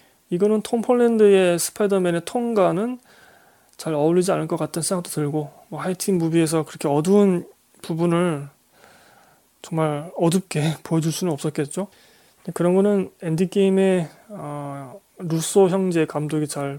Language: Korean